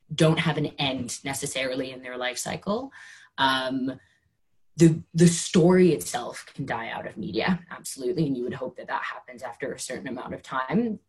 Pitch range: 125-150 Hz